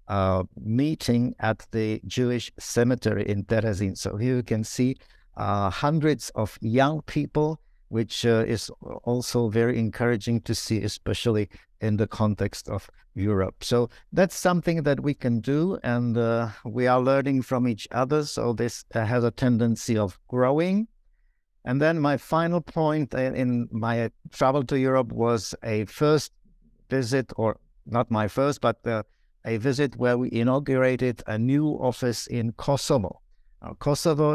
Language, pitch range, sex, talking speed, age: English, 110-135 Hz, male, 150 wpm, 60-79